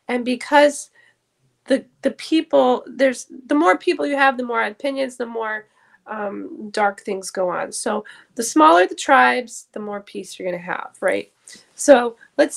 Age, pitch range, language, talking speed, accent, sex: 20-39, 210-275 Hz, English, 170 wpm, American, female